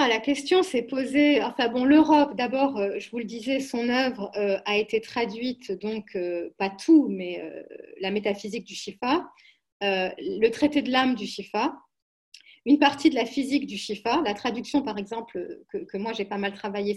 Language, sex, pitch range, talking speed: French, female, 200-270 Hz, 190 wpm